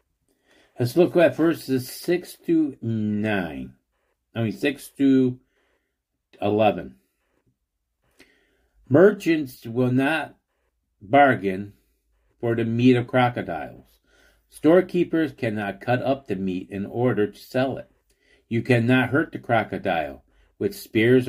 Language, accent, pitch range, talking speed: English, American, 100-135 Hz, 100 wpm